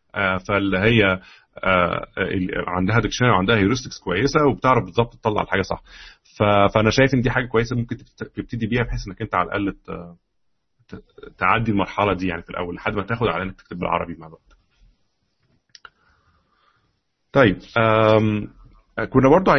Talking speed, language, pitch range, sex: 135 wpm, Arabic, 95-130 Hz, male